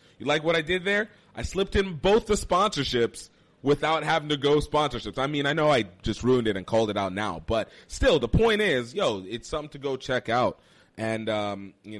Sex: male